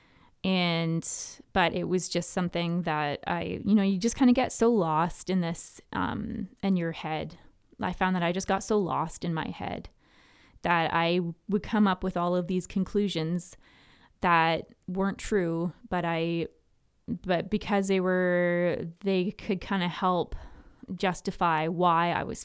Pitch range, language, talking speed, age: 165-195 Hz, English, 165 wpm, 20-39